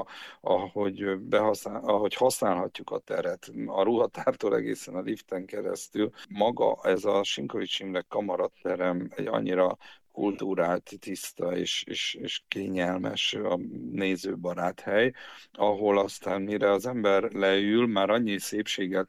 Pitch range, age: 95-115 Hz, 50-69